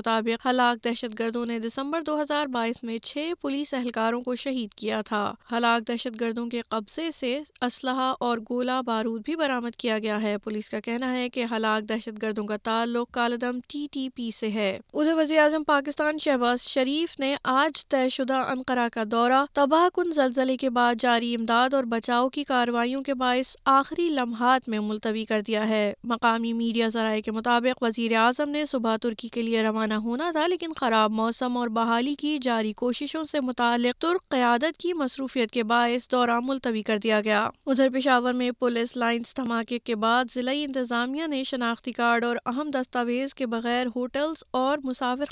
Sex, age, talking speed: female, 20-39, 180 wpm